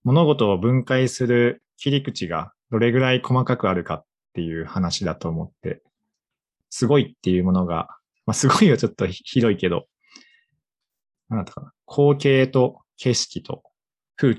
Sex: male